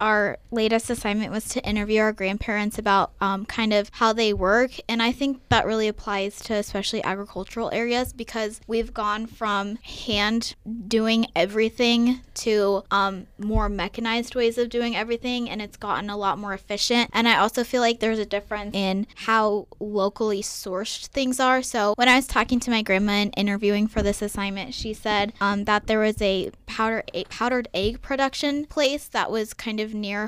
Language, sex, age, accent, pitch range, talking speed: English, female, 20-39, American, 200-230 Hz, 180 wpm